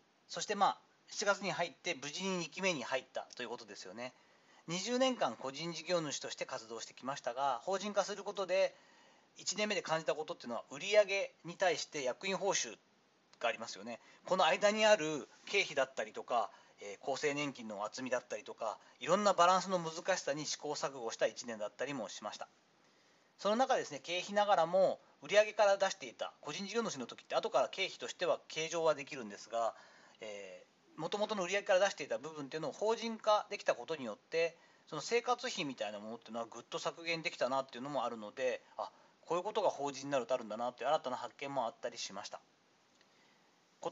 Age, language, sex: 40-59, Japanese, male